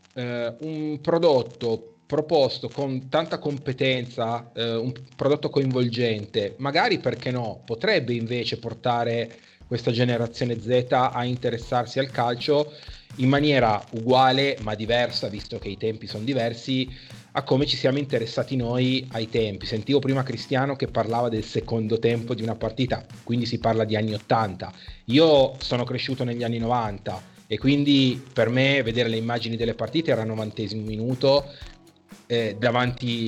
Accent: native